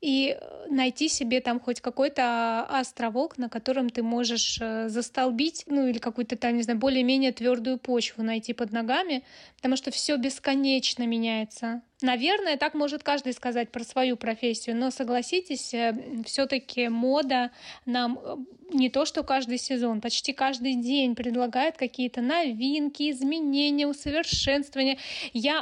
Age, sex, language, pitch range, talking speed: 20-39, female, Russian, 245-290 Hz, 130 wpm